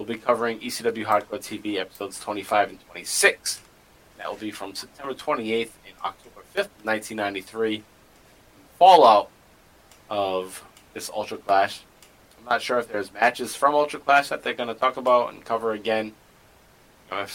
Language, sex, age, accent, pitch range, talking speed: English, male, 30-49, American, 95-120 Hz, 150 wpm